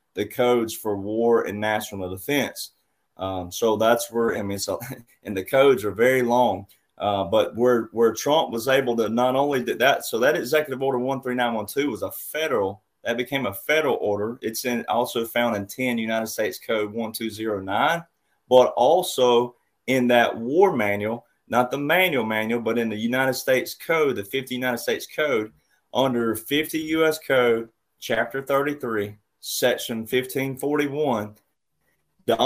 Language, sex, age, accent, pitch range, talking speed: English, male, 30-49, American, 110-135 Hz, 150 wpm